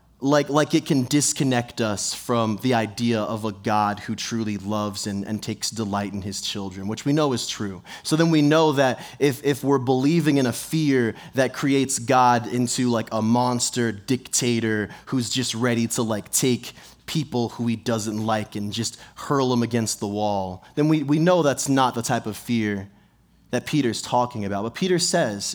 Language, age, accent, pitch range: English, 20-39, American, 105-145 Hz